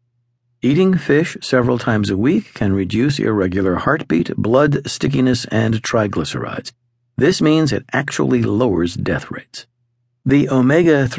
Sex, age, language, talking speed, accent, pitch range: male, 50-69, English, 125 wpm, American, 110-140 Hz